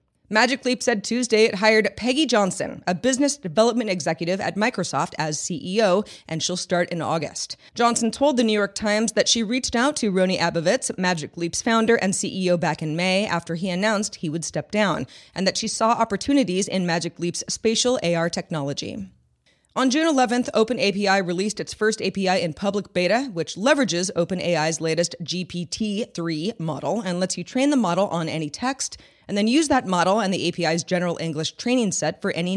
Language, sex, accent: English, female, American